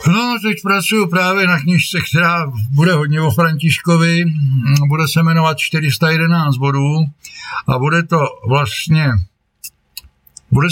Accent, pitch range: native, 125-145 Hz